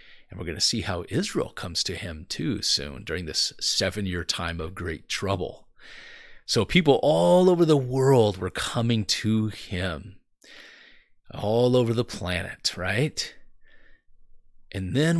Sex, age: male, 30-49